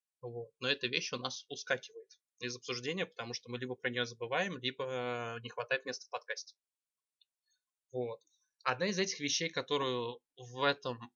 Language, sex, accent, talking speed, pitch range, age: Russian, male, native, 160 wpm, 120-165 Hz, 20-39